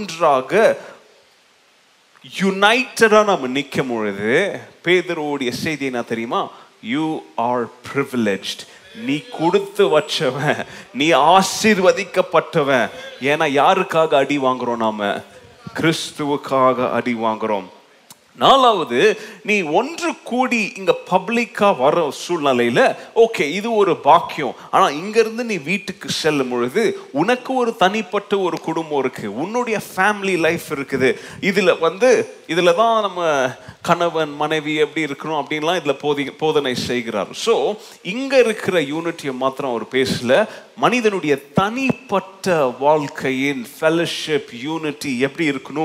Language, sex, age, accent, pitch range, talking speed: Tamil, male, 30-49, native, 140-210 Hz, 80 wpm